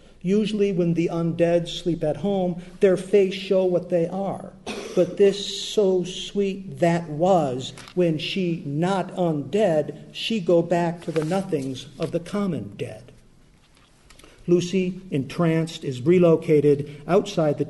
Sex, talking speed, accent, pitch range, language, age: male, 130 wpm, American, 145-175 Hz, English, 50-69